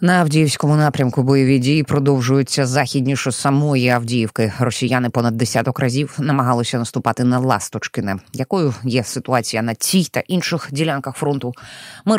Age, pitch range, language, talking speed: 20-39, 130-185 Hz, Ukrainian, 135 wpm